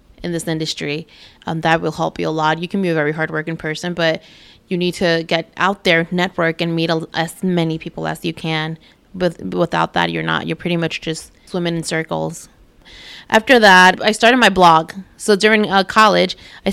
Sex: female